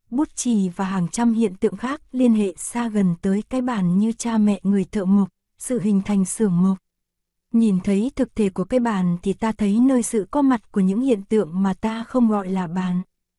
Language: Korean